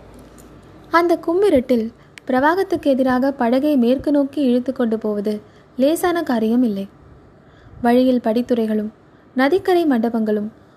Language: Tamil